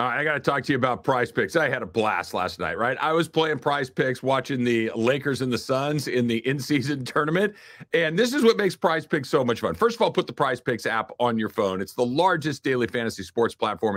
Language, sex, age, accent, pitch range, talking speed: English, male, 50-69, American, 125-175 Hz, 265 wpm